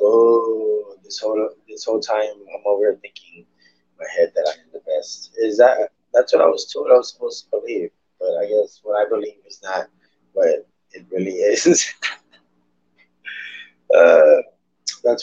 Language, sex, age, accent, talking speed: English, male, 20-39, American, 165 wpm